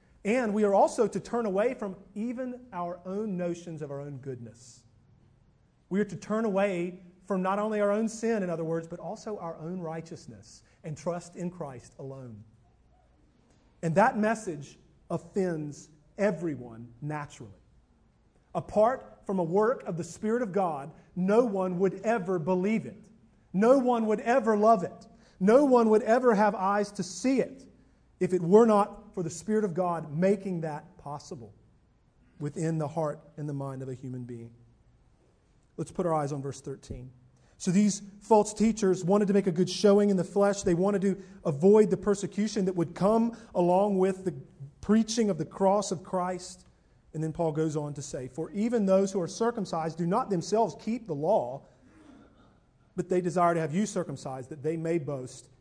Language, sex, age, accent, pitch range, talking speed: English, male, 40-59, American, 155-205 Hz, 180 wpm